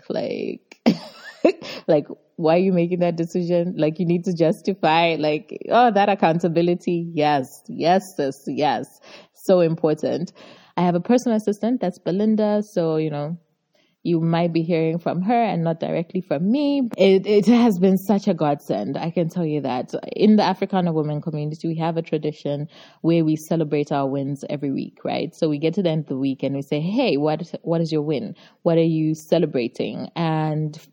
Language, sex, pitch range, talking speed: English, female, 155-185 Hz, 185 wpm